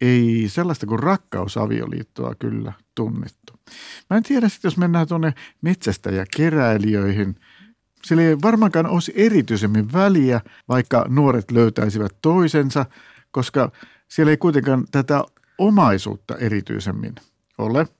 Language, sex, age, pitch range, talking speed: Finnish, male, 50-69, 110-150 Hz, 110 wpm